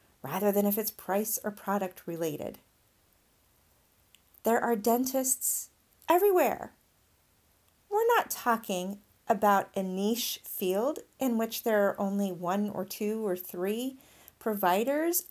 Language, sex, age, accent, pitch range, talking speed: English, female, 40-59, American, 195-285 Hz, 120 wpm